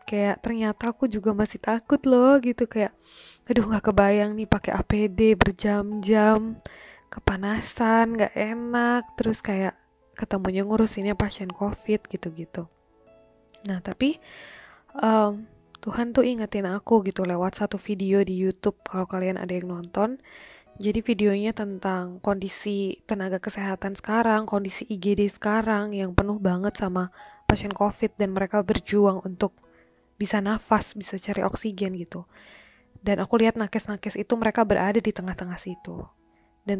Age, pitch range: 20-39, 195-220 Hz